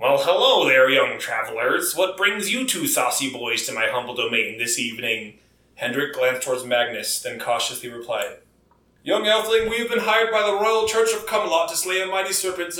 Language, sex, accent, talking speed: English, male, American, 190 wpm